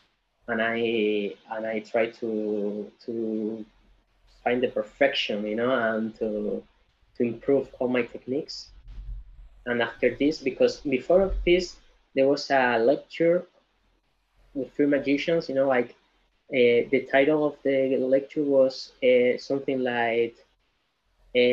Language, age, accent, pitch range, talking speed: English, 20-39, Spanish, 115-135 Hz, 130 wpm